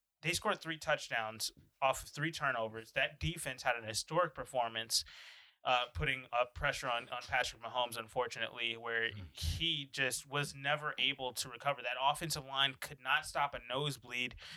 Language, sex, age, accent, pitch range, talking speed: English, male, 20-39, American, 125-150 Hz, 160 wpm